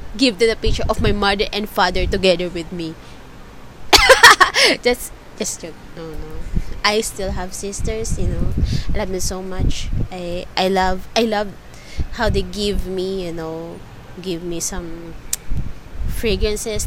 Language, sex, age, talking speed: English, female, 20-39, 150 wpm